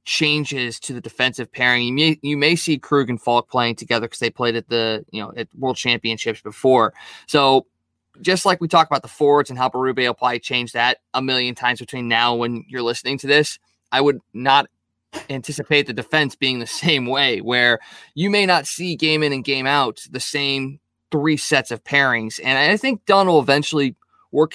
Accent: American